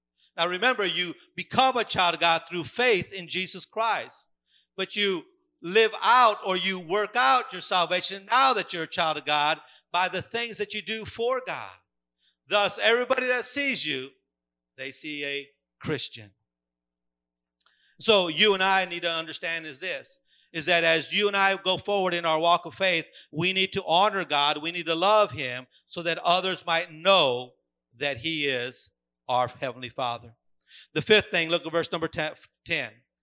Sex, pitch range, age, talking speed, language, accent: male, 140-195 Hz, 50-69, 175 wpm, English, American